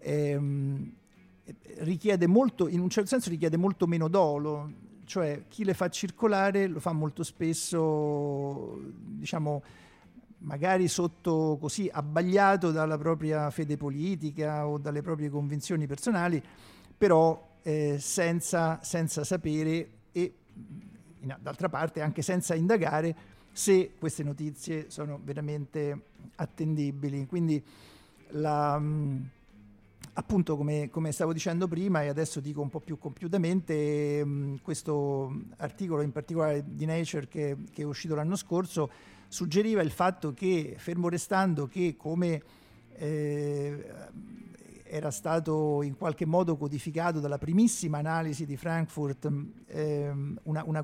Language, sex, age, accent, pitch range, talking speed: Italian, male, 50-69, native, 145-175 Hz, 120 wpm